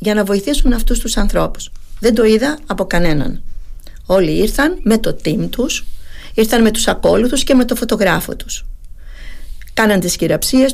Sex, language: female, Greek